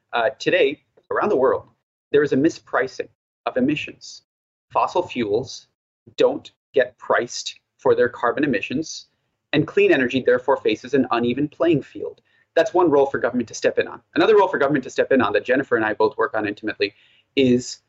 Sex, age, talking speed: male, 30-49, 185 wpm